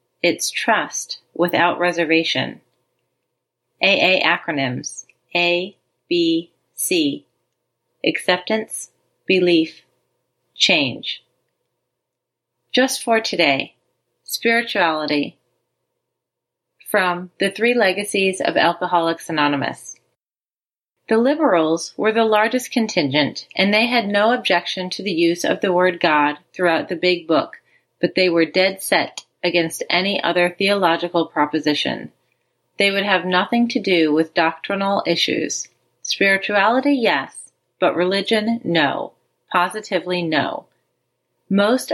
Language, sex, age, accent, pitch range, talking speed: English, female, 30-49, American, 170-220 Hz, 105 wpm